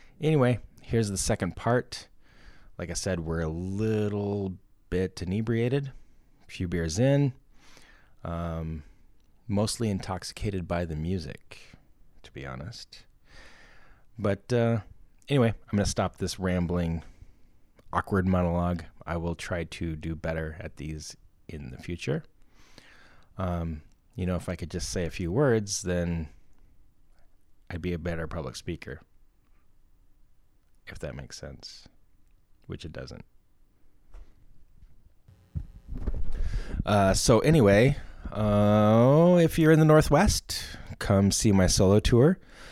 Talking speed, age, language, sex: 120 wpm, 20-39, English, male